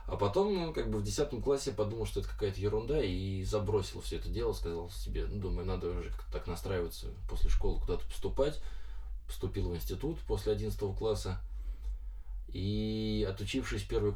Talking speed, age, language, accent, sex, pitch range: 170 wpm, 20-39, Russian, native, male, 95-120 Hz